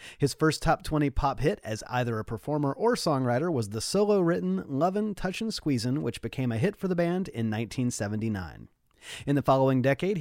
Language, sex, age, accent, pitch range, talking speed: English, male, 30-49, American, 125-175 Hz, 180 wpm